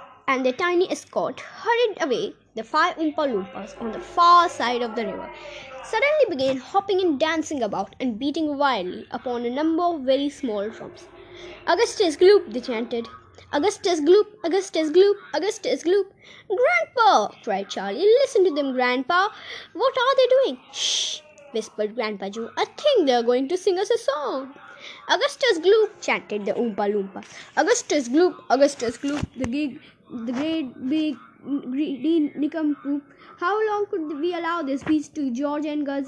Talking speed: 160 wpm